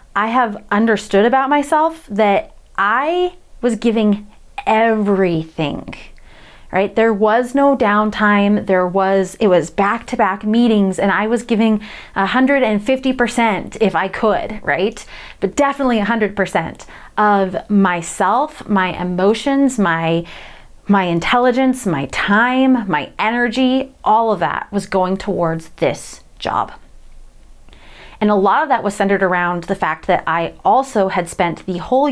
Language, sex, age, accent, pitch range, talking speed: English, female, 30-49, American, 190-235 Hz, 135 wpm